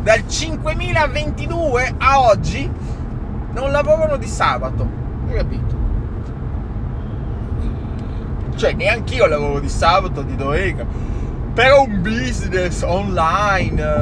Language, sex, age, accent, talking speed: Italian, male, 30-49, native, 95 wpm